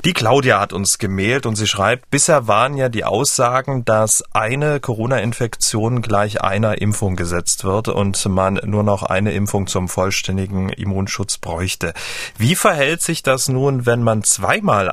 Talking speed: 155 wpm